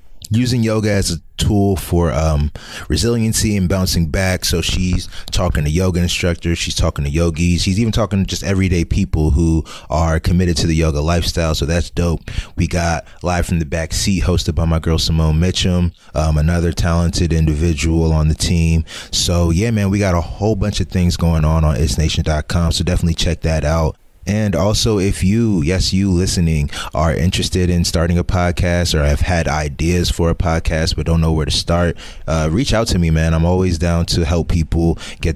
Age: 20-39